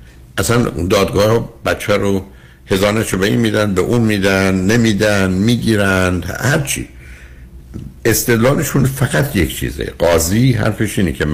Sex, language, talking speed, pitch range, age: male, Persian, 120 wpm, 75-110 Hz, 60-79